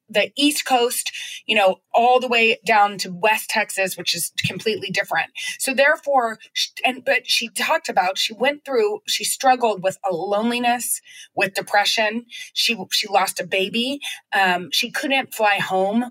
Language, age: English, 30-49